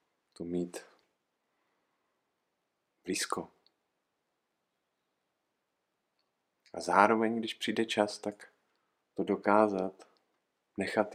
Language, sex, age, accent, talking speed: Czech, male, 50-69, native, 65 wpm